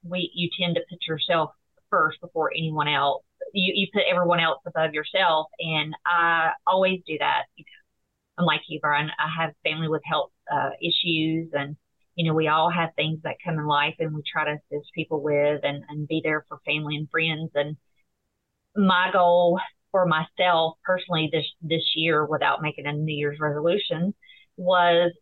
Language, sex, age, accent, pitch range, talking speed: English, female, 30-49, American, 155-180 Hz, 175 wpm